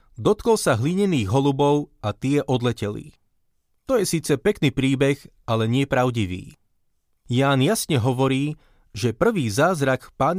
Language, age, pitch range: Slovak, 30-49, 125-160 Hz